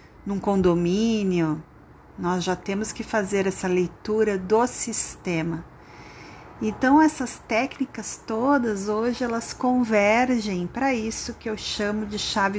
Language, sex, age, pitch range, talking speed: Portuguese, female, 40-59, 195-240 Hz, 120 wpm